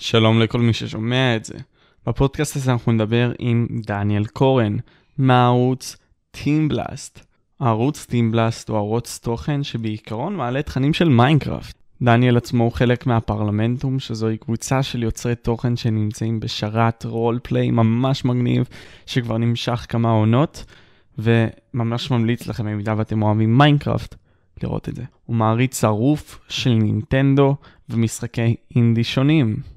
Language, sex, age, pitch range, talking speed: Hebrew, male, 20-39, 115-130 Hz, 130 wpm